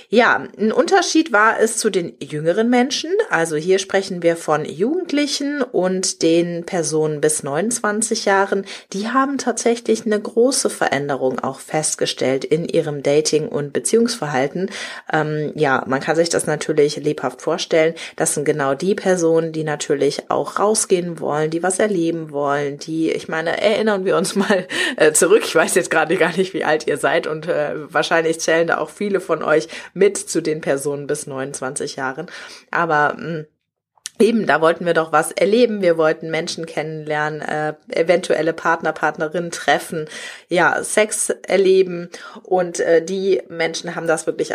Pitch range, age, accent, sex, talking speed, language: 155-205 Hz, 30-49, German, female, 160 wpm, German